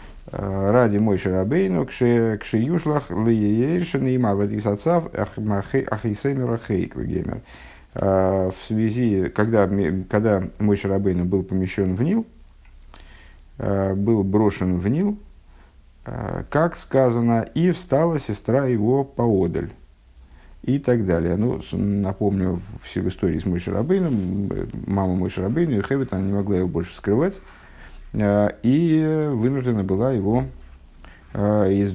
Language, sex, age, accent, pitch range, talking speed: Russian, male, 50-69, native, 90-120 Hz, 95 wpm